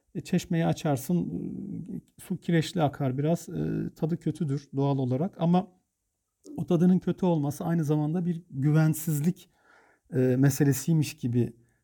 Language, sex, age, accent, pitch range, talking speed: Turkish, male, 50-69, native, 125-170 Hz, 105 wpm